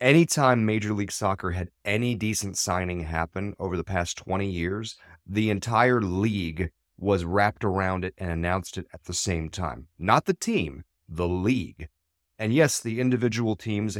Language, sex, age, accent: English, male, 30-49, American